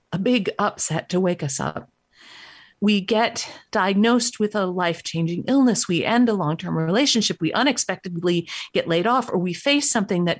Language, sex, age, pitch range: English, female, 50-69, 165-230 Hz